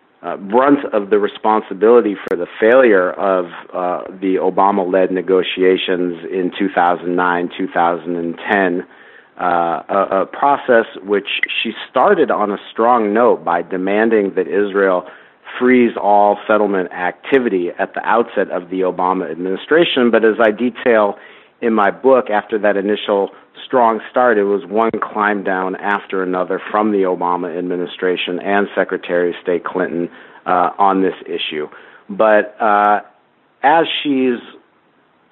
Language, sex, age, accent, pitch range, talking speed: English, male, 50-69, American, 90-105 Hz, 125 wpm